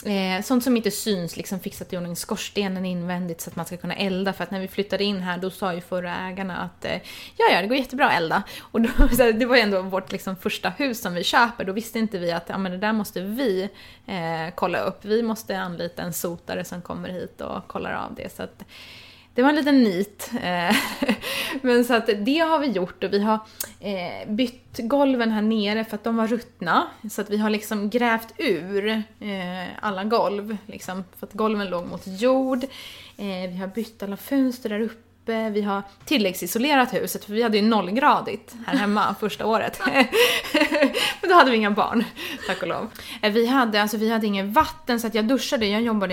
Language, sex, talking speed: Swedish, female, 205 wpm